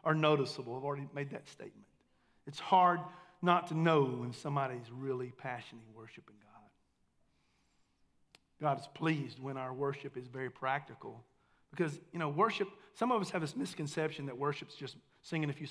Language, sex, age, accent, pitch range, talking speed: English, male, 40-59, American, 140-195 Hz, 165 wpm